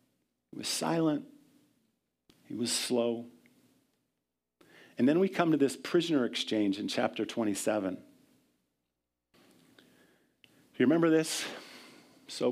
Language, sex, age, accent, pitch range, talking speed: English, male, 50-69, American, 125-155 Hz, 100 wpm